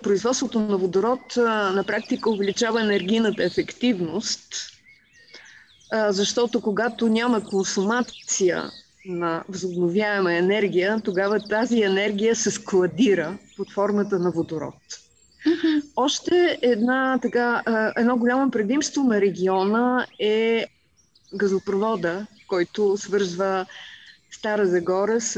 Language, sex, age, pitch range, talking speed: Bulgarian, female, 30-49, 190-235 Hz, 90 wpm